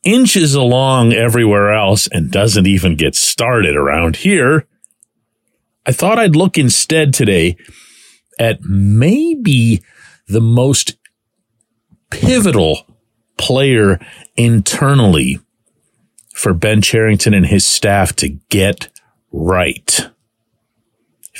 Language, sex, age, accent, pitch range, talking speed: English, male, 40-59, American, 90-115 Hz, 95 wpm